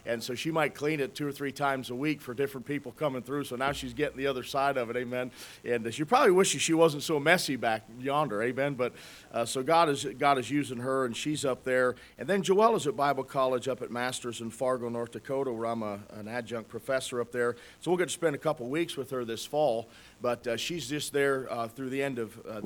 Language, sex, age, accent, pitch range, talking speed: English, male, 40-59, American, 120-150 Hz, 255 wpm